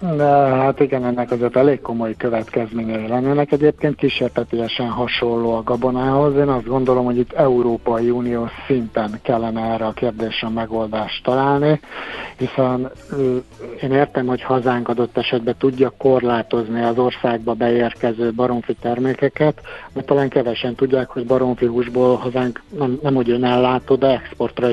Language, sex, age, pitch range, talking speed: Hungarian, male, 60-79, 115-135 Hz, 140 wpm